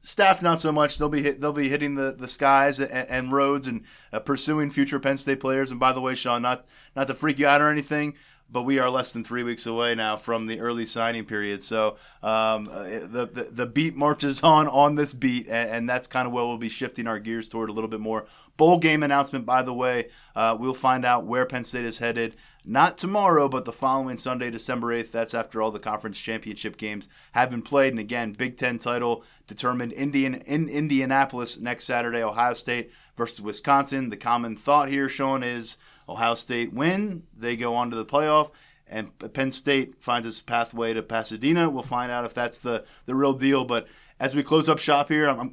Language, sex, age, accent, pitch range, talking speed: English, male, 20-39, American, 115-140 Hz, 220 wpm